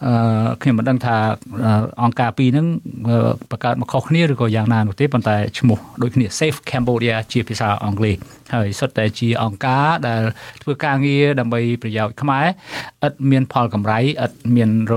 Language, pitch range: English, 110-130 Hz